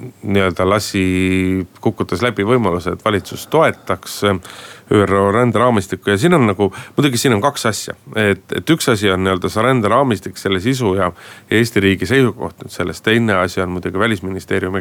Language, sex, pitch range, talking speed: Finnish, male, 95-115 Hz, 150 wpm